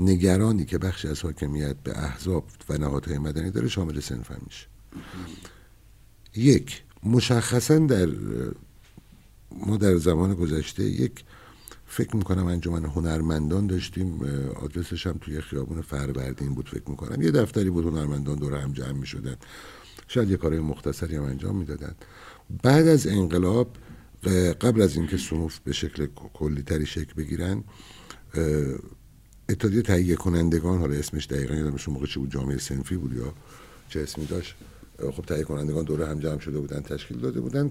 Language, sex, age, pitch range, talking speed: Persian, male, 60-79, 75-105 Hz, 140 wpm